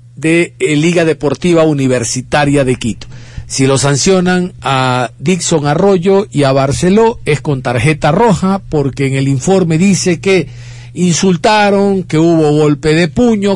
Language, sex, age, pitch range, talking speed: Spanish, male, 50-69, 140-210 Hz, 135 wpm